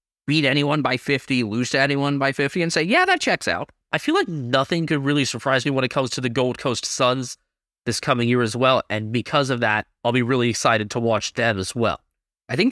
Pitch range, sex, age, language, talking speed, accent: 115-160 Hz, male, 20-39, English, 240 wpm, American